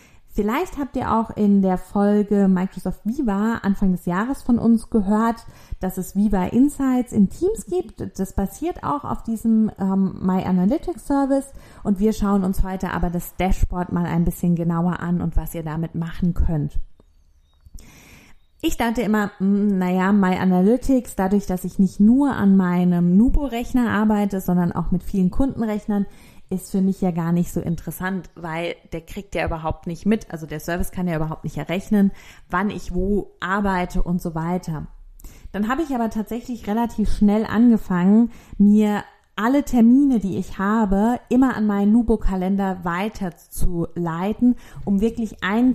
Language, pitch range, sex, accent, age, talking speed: German, 180-220 Hz, female, German, 30-49, 160 wpm